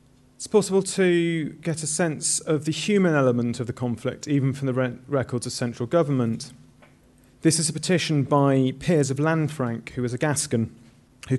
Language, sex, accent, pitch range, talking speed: English, male, British, 120-145 Hz, 175 wpm